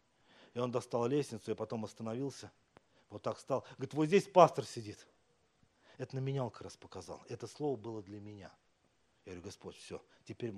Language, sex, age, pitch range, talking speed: Russian, male, 40-59, 125-200 Hz, 180 wpm